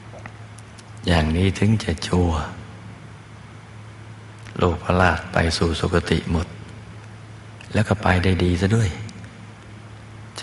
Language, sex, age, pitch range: Thai, male, 60-79, 85-110 Hz